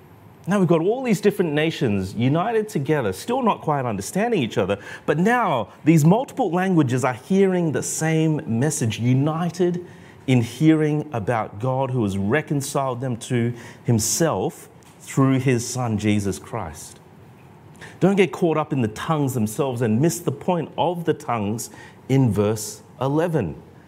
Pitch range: 115-155 Hz